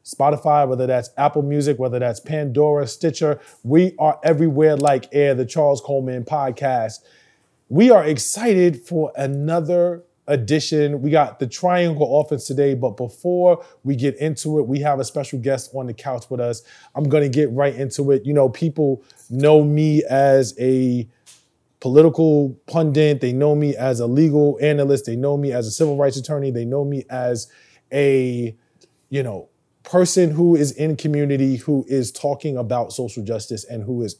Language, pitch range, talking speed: English, 125-150 Hz, 170 wpm